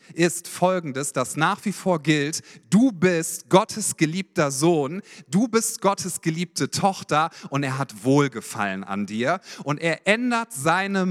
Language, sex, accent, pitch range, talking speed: German, male, German, 155-200 Hz, 145 wpm